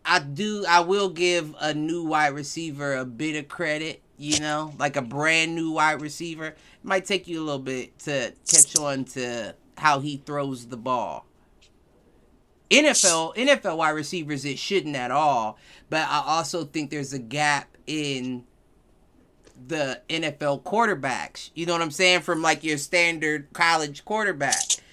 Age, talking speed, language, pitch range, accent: 30-49, 160 wpm, English, 140-185 Hz, American